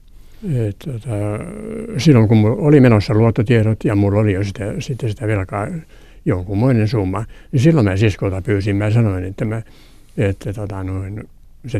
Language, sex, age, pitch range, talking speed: Finnish, male, 60-79, 105-130 Hz, 140 wpm